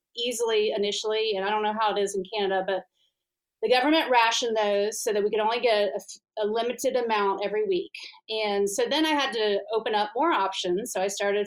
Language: English